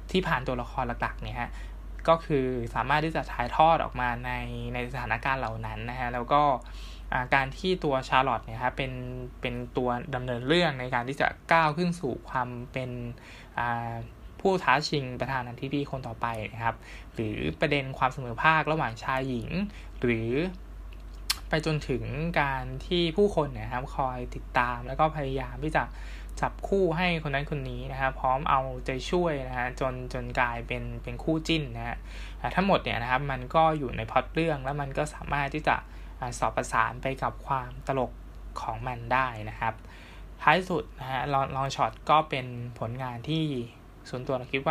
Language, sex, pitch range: Thai, male, 120-145 Hz